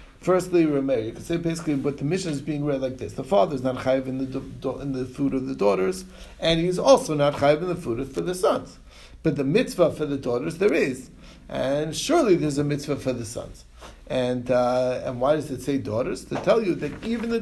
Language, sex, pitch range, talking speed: English, male, 130-170 Hz, 225 wpm